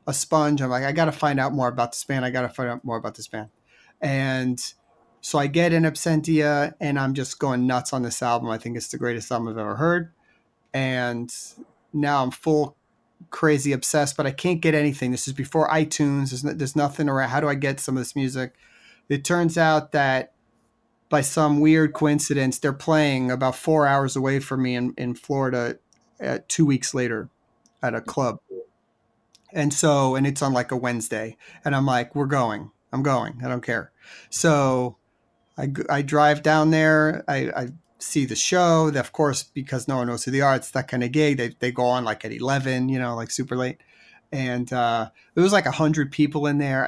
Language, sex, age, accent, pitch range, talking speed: English, male, 30-49, American, 125-150 Hz, 205 wpm